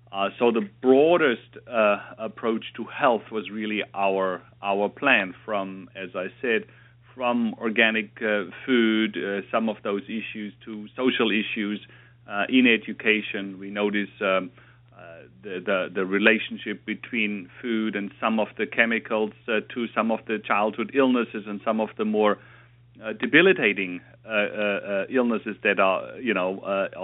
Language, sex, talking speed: English, male, 155 wpm